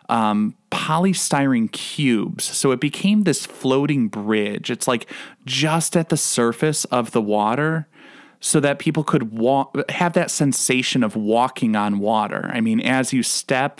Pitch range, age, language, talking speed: 115-180 Hz, 30-49, English, 150 wpm